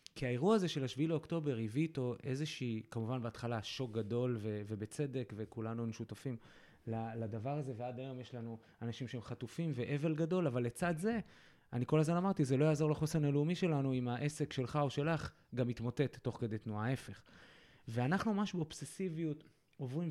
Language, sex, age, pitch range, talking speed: Hebrew, male, 20-39, 125-155 Hz, 165 wpm